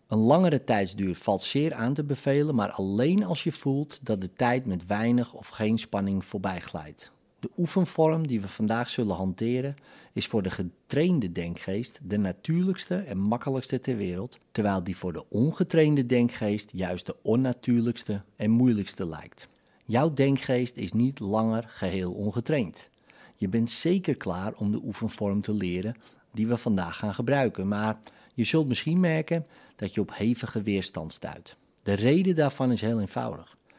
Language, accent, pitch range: Dutch, Dutch, 100-140 Hz